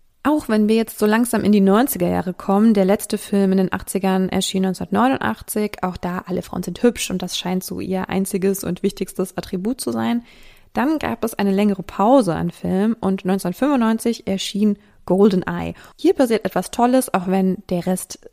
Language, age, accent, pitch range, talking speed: German, 20-39, German, 185-225 Hz, 180 wpm